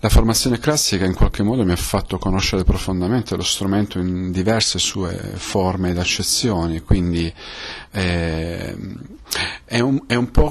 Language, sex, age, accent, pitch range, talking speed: Italian, male, 40-59, native, 95-110 Hz, 145 wpm